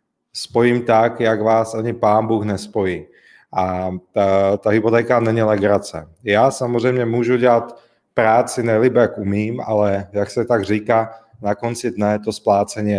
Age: 30-49